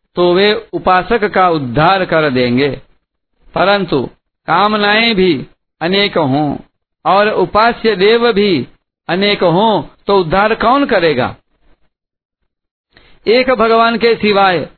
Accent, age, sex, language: native, 60-79, male, Hindi